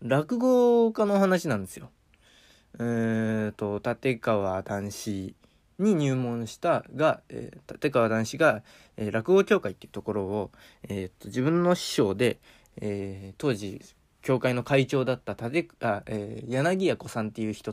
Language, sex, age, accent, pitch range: Japanese, male, 20-39, native, 105-145 Hz